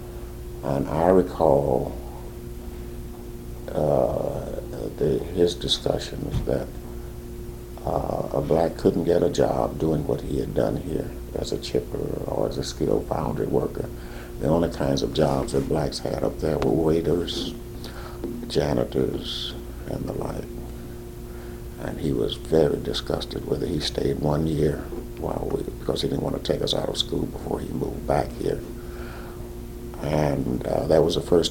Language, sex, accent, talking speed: English, male, American, 150 wpm